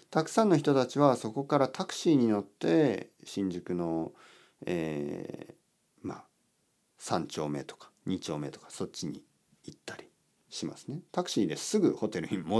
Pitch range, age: 80-125 Hz, 50-69